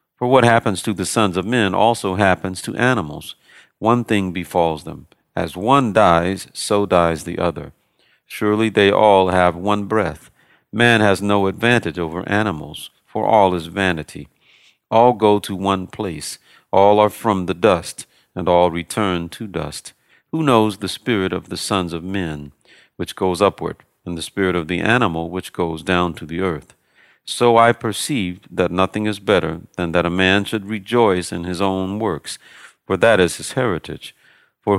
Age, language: 50-69, English